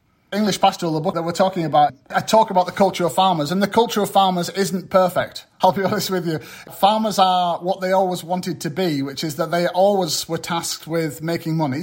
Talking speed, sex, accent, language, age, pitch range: 230 wpm, male, British, English, 30-49, 155-180 Hz